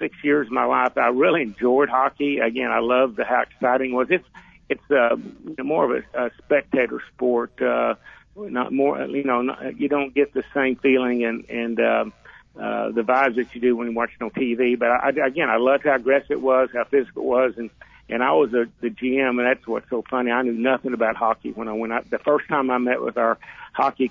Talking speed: 235 wpm